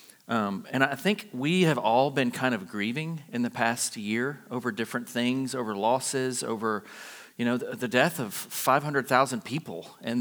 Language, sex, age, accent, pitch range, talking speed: English, male, 40-59, American, 110-135 Hz, 170 wpm